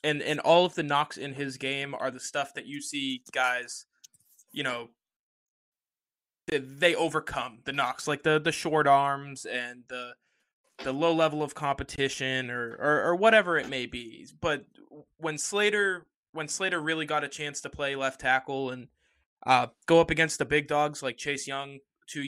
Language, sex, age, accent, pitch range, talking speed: English, male, 20-39, American, 130-155 Hz, 180 wpm